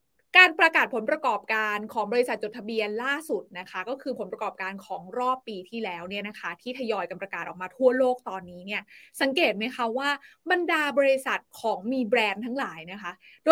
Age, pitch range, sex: 20-39, 220-300 Hz, female